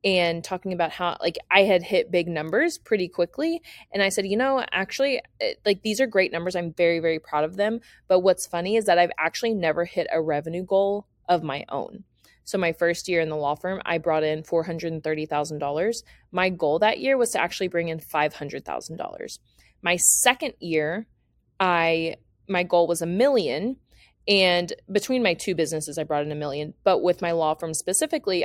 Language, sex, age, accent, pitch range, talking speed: English, female, 20-39, American, 165-210 Hz, 195 wpm